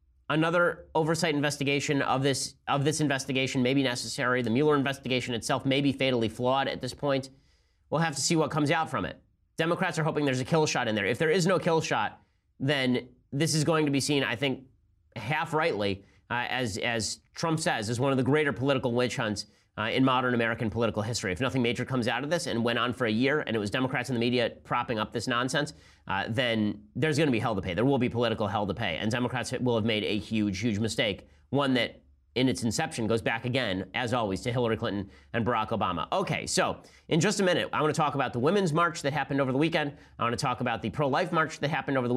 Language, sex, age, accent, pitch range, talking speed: English, male, 30-49, American, 115-150 Hz, 245 wpm